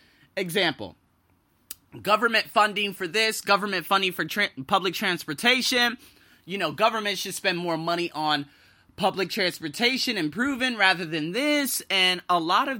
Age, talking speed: 30-49, 135 wpm